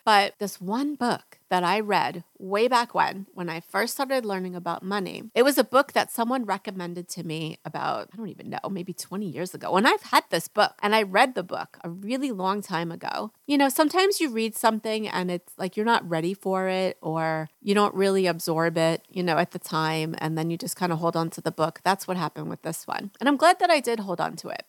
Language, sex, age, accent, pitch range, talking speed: English, female, 30-49, American, 180-240 Hz, 250 wpm